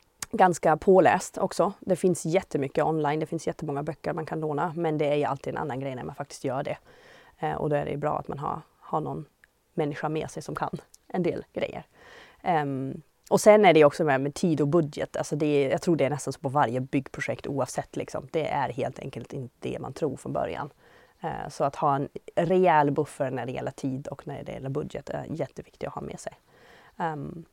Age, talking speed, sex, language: 30-49, 220 wpm, female, Swedish